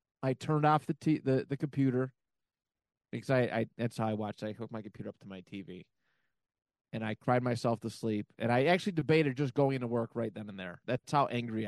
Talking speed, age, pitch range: 225 wpm, 20-39, 115-155 Hz